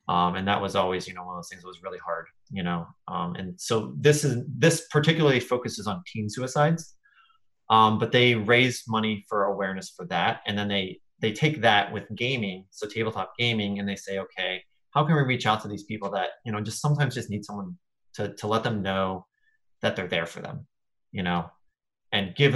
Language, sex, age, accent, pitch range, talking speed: English, male, 30-49, American, 100-125 Hz, 220 wpm